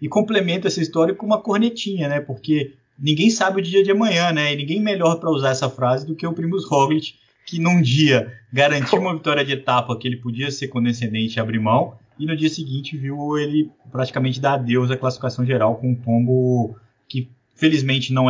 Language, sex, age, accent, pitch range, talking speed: Portuguese, male, 20-39, Brazilian, 120-155 Hz, 205 wpm